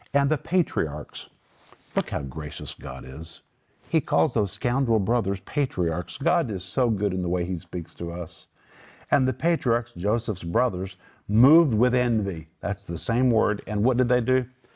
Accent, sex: American, male